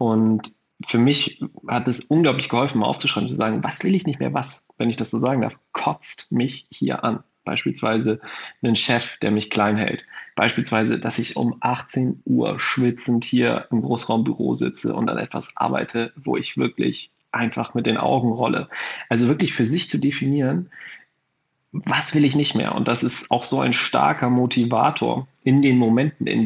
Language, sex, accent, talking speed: German, male, German, 180 wpm